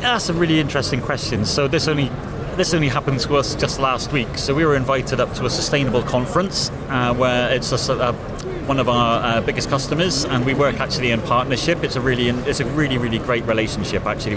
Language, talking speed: English, 215 wpm